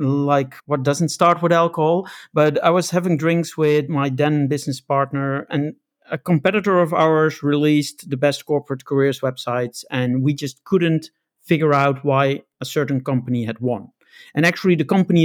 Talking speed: 170 wpm